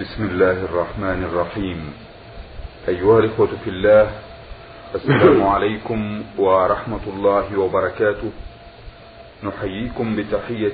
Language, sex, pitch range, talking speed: Arabic, male, 95-115 Hz, 80 wpm